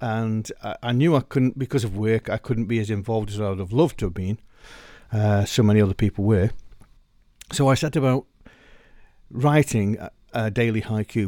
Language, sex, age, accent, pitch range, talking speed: English, male, 60-79, British, 95-125 Hz, 185 wpm